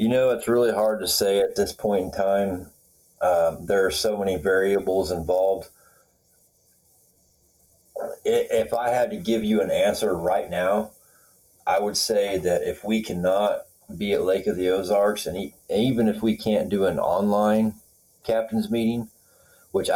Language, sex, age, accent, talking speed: English, male, 30-49, American, 160 wpm